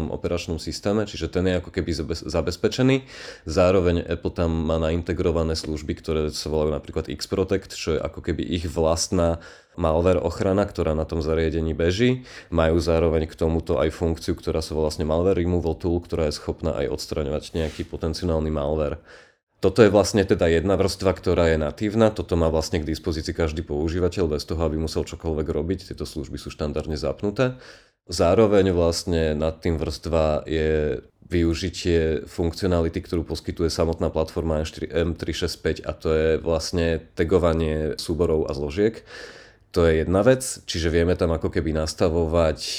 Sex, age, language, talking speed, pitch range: male, 30-49, Czech, 160 wpm, 80-90 Hz